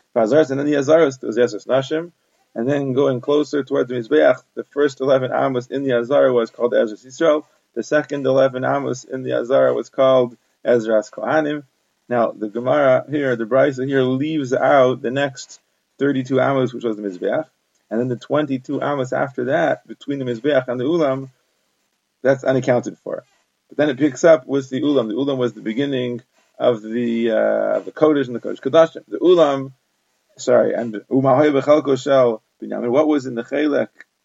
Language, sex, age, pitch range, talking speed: English, male, 30-49, 125-150 Hz, 190 wpm